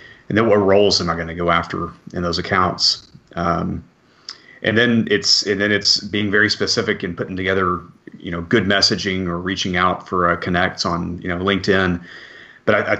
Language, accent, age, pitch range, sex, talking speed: English, American, 30-49, 90-105 Hz, male, 200 wpm